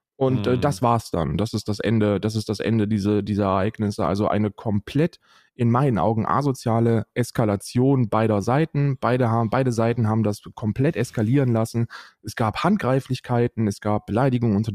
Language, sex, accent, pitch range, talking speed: German, male, German, 105-125 Hz, 170 wpm